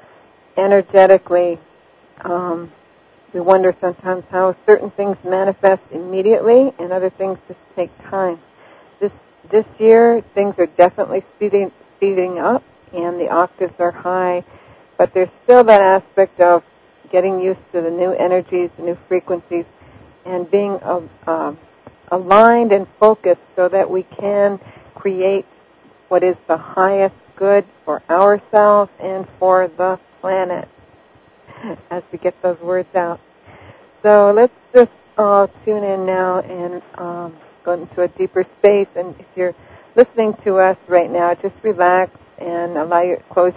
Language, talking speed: English, 140 wpm